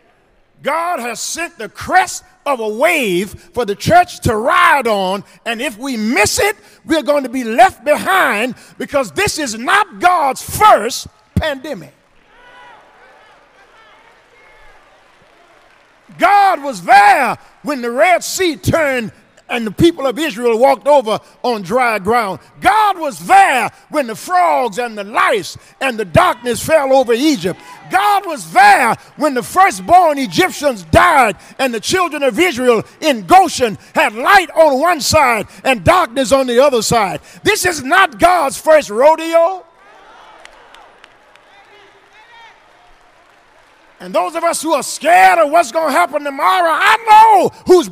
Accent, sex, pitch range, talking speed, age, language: American, male, 255-360 Hz, 140 wpm, 50-69, English